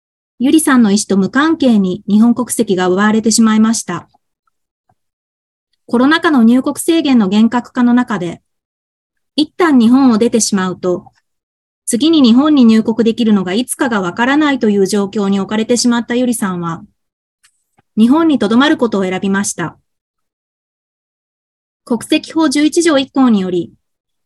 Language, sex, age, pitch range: Japanese, female, 20-39, 200-275 Hz